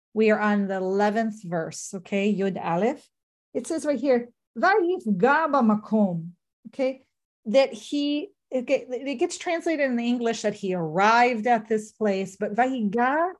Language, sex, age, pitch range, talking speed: English, female, 40-59, 190-240 Hz, 145 wpm